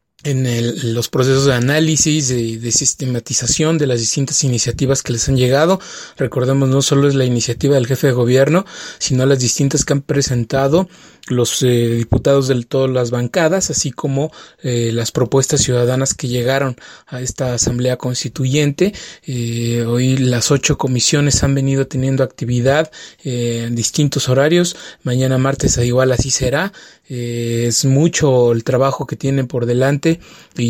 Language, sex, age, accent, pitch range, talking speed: English, male, 30-49, Mexican, 125-145 Hz, 155 wpm